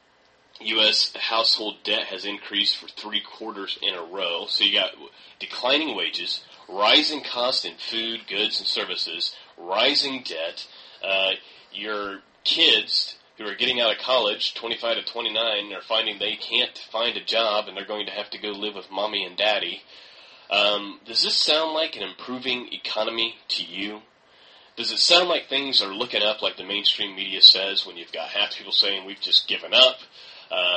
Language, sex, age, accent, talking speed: English, male, 30-49, American, 180 wpm